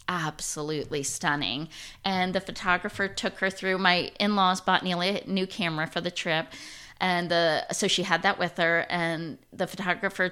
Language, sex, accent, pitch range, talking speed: English, female, American, 165-195 Hz, 175 wpm